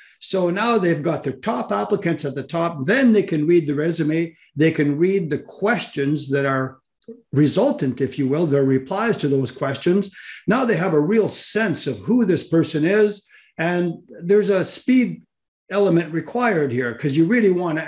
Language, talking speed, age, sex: English, 185 wpm, 50-69, male